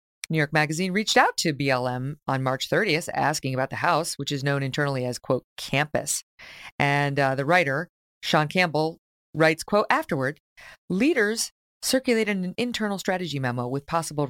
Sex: female